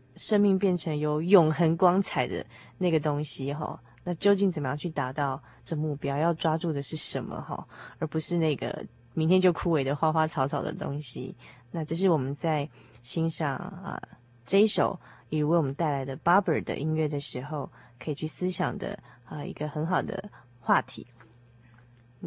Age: 20-39